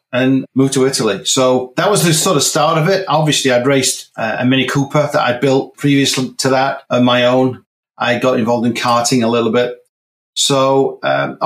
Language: English